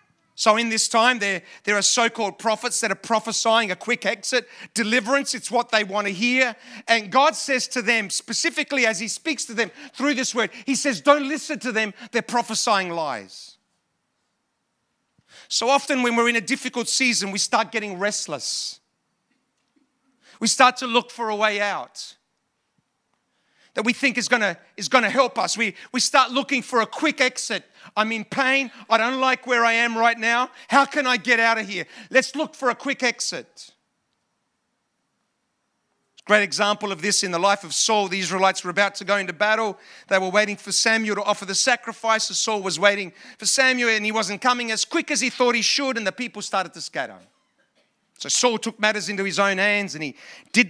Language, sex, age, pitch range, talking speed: English, male, 40-59, 205-255 Hz, 200 wpm